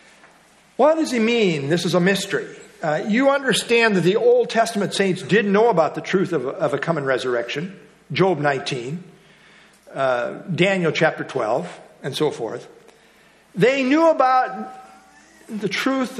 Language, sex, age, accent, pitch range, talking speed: English, male, 50-69, American, 170-220 Hz, 150 wpm